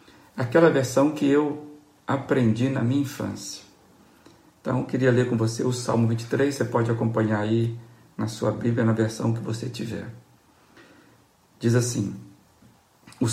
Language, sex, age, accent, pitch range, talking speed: Portuguese, male, 50-69, Brazilian, 110-130 Hz, 140 wpm